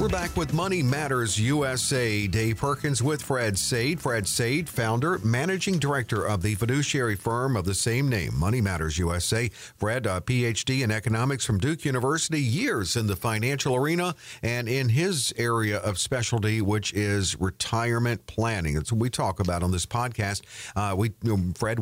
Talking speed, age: 165 wpm, 50-69